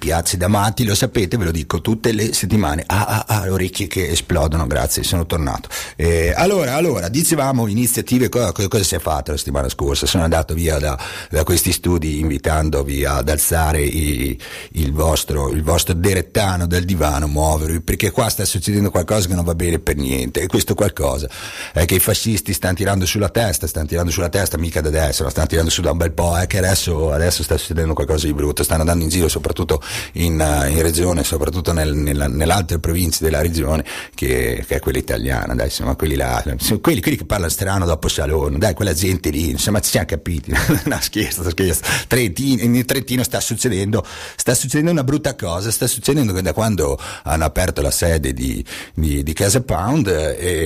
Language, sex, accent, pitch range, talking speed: Italian, male, native, 80-105 Hz, 200 wpm